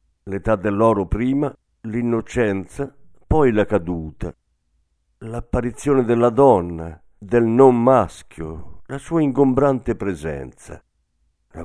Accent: native